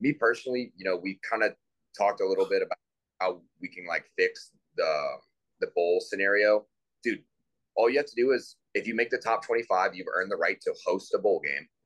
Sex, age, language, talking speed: male, 30-49, English, 220 wpm